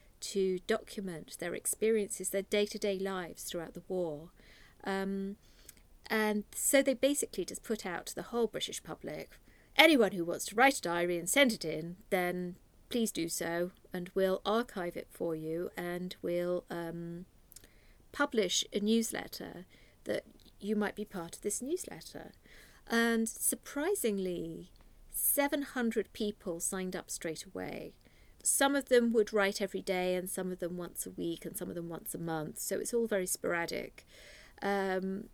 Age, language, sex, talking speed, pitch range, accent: 50-69, English, female, 160 wpm, 175-215 Hz, British